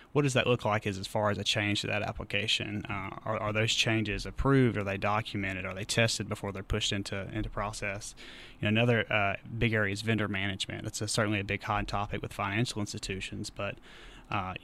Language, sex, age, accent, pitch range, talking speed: English, male, 30-49, American, 100-115 Hz, 215 wpm